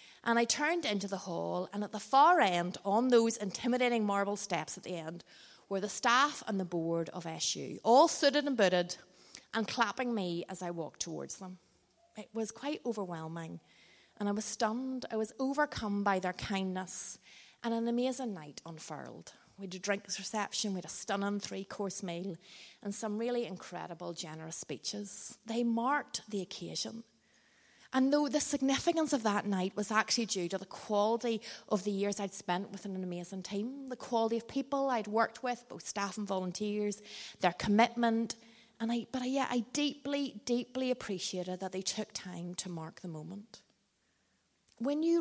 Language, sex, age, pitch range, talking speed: English, female, 30-49, 185-235 Hz, 175 wpm